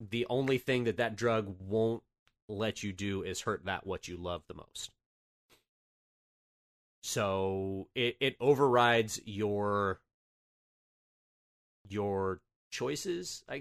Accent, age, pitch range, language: American, 30-49, 90-125 Hz, English